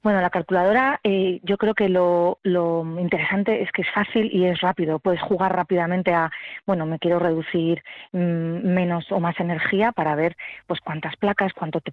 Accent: Spanish